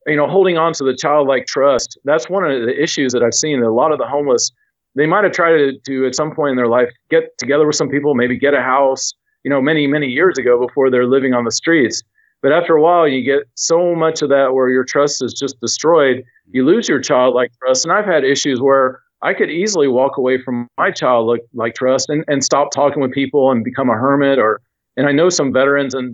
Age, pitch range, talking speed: 40-59, 125-145 Hz, 250 wpm